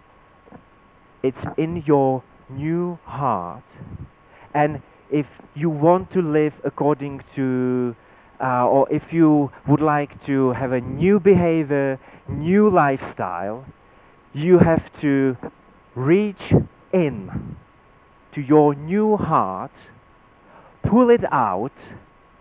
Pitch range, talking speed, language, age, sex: 115-165 Hz, 100 wpm, English, 40-59, male